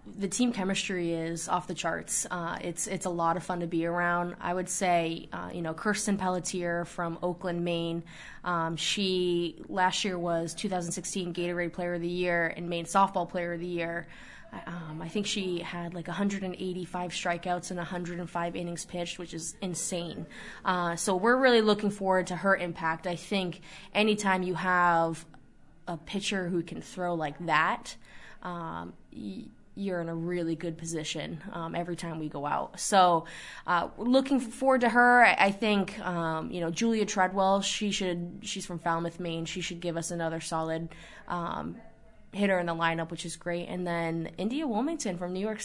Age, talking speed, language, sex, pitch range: 20-39, 180 wpm, English, female, 170-190 Hz